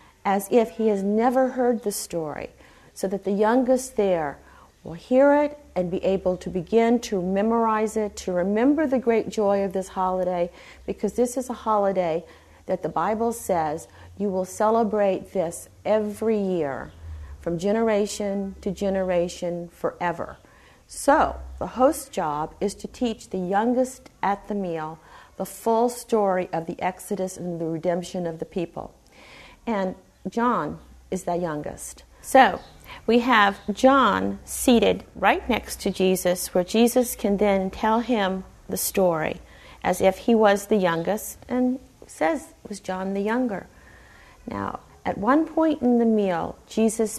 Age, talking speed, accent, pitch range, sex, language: 50-69, 150 wpm, American, 180-225 Hz, female, English